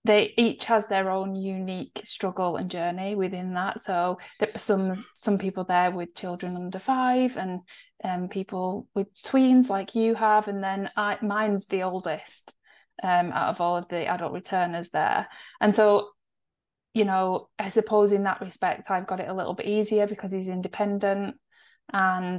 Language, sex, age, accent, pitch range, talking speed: English, female, 30-49, British, 180-210 Hz, 175 wpm